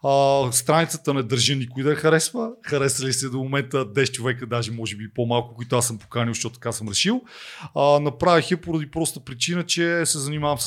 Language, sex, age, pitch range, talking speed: Bulgarian, male, 30-49, 125-175 Hz, 190 wpm